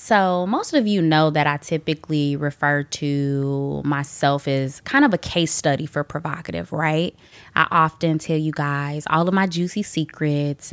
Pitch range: 155-190 Hz